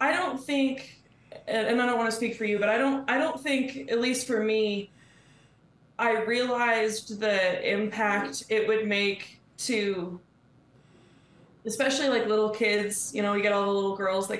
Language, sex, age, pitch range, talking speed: English, female, 20-39, 180-220 Hz, 175 wpm